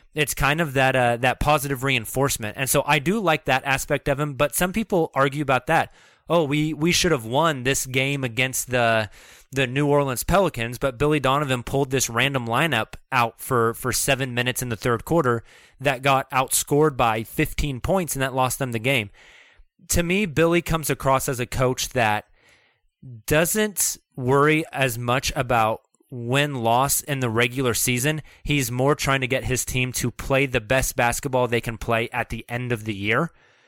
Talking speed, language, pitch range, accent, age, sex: 185 wpm, English, 120-145 Hz, American, 30-49, male